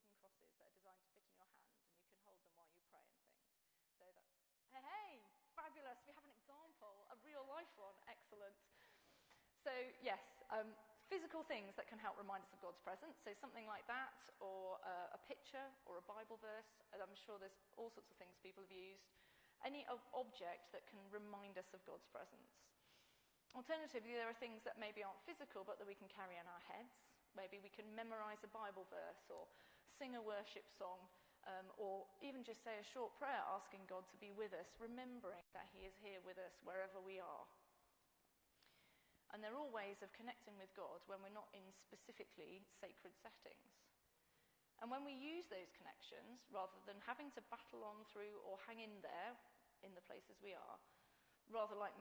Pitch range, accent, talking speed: 195-240 Hz, British, 195 wpm